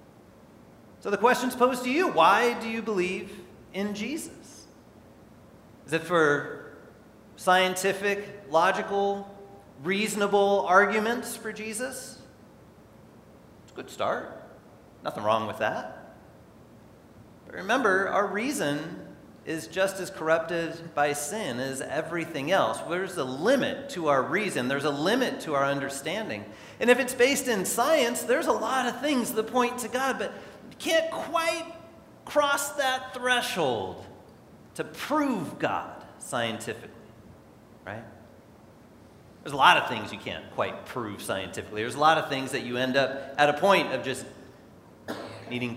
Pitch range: 160-250 Hz